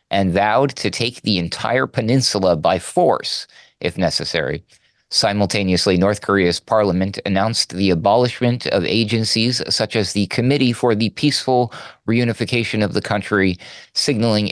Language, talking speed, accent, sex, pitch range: English, 130 wpm, American, male, 90-115 Hz